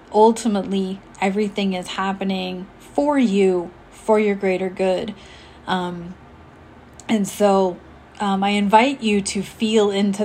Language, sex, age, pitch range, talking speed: English, female, 30-49, 185-220 Hz, 115 wpm